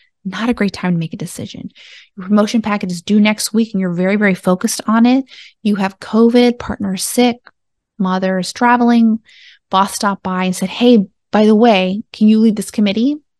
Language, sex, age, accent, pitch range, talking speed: English, female, 20-39, American, 190-235 Hz, 195 wpm